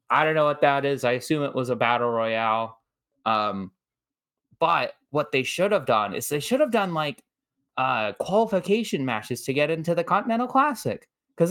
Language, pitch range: English, 135-180 Hz